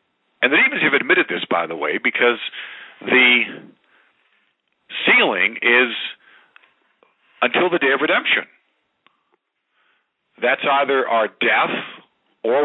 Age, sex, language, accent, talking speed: 50-69, male, English, American, 110 wpm